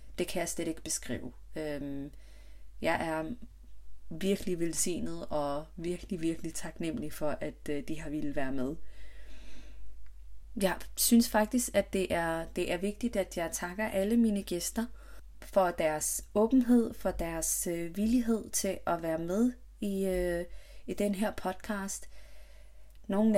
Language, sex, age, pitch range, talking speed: Danish, female, 30-49, 150-190 Hz, 135 wpm